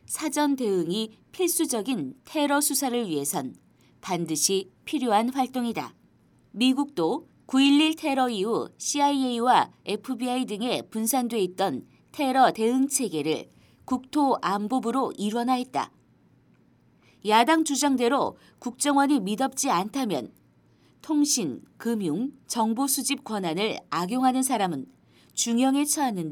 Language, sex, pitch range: Korean, female, 210-275 Hz